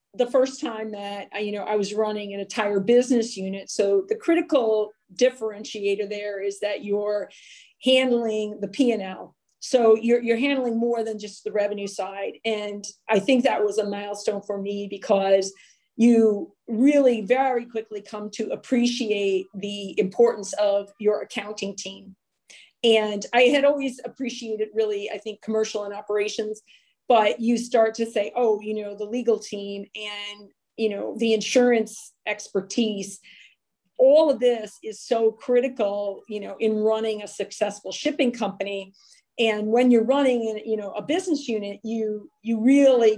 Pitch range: 205-235 Hz